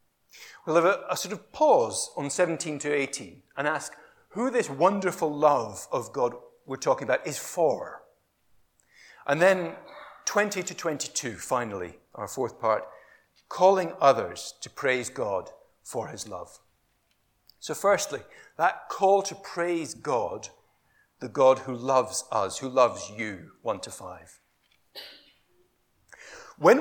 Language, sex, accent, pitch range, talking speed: English, male, British, 135-200 Hz, 135 wpm